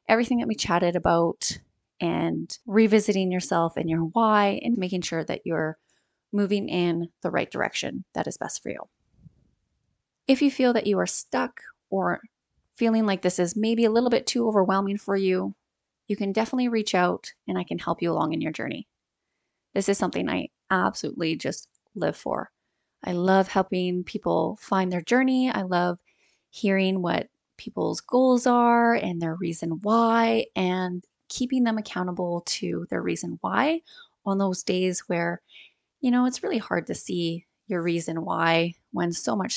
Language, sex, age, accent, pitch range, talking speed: English, female, 20-39, American, 175-225 Hz, 170 wpm